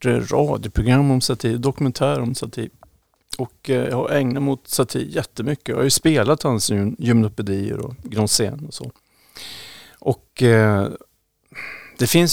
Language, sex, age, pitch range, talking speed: Swedish, male, 50-69, 110-140 Hz, 130 wpm